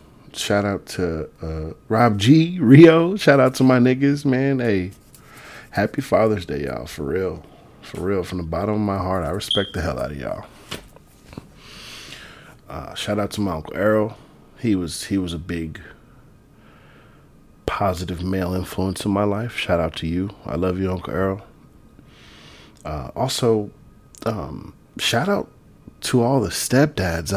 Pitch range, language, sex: 90-125 Hz, English, male